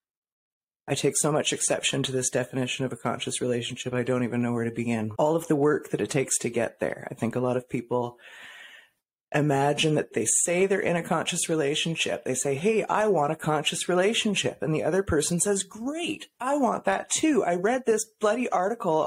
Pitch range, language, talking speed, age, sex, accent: 135-195 Hz, English, 210 wpm, 30-49, female, American